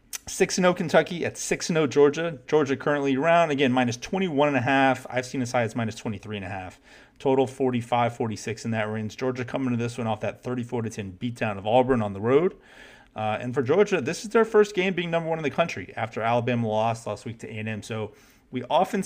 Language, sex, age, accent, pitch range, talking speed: English, male, 30-49, American, 110-145 Hz, 215 wpm